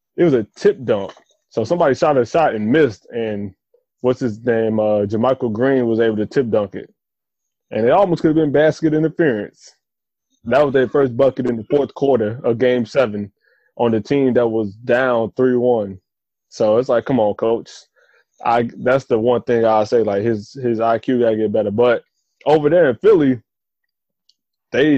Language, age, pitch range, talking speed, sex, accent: English, 20-39, 110-130 Hz, 190 wpm, male, American